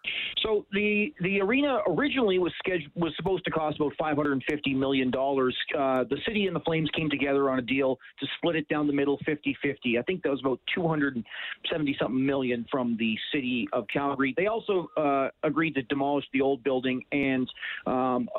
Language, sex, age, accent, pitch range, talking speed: English, male, 40-59, American, 135-165 Hz, 185 wpm